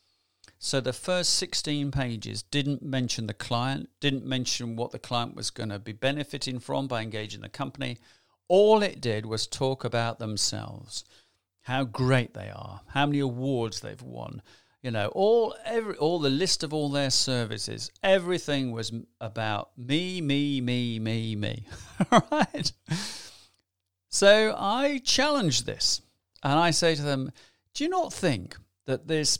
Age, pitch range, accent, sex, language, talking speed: 50-69, 110-150 Hz, British, male, English, 155 wpm